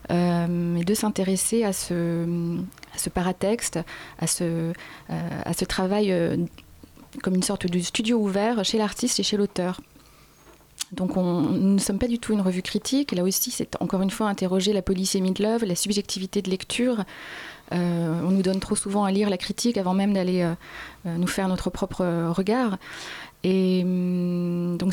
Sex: female